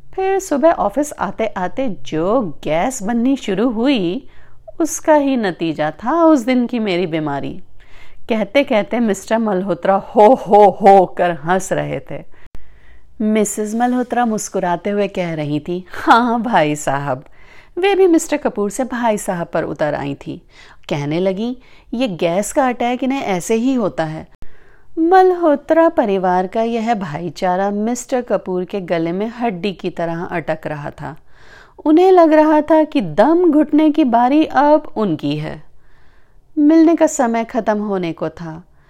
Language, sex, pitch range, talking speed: Hindi, female, 180-285 Hz, 150 wpm